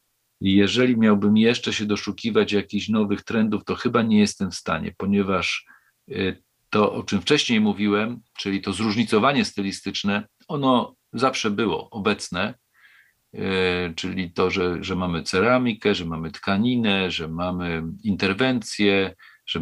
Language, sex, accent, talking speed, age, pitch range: Polish, male, native, 125 wpm, 40-59, 90-105 Hz